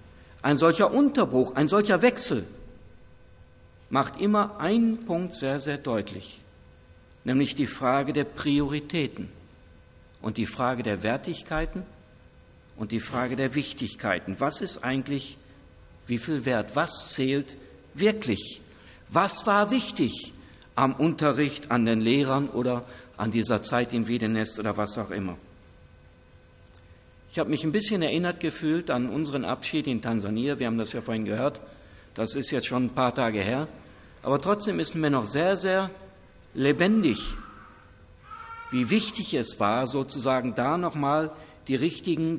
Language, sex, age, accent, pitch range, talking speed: German, male, 60-79, German, 100-155 Hz, 140 wpm